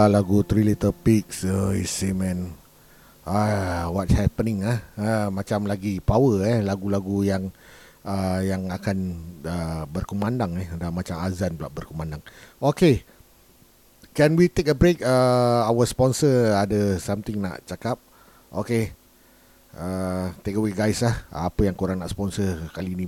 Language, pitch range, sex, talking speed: Malay, 85-115 Hz, male, 145 wpm